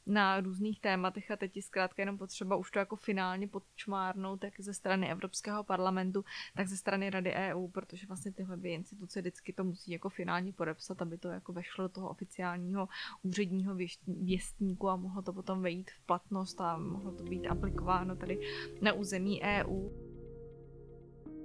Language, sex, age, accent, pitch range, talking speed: Czech, female, 20-39, native, 185-205 Hz, 165 wpm